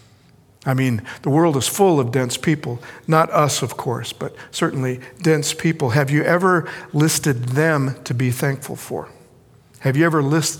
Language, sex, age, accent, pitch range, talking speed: English, male, 50-69, American, 130-155 Hz, 165 wpm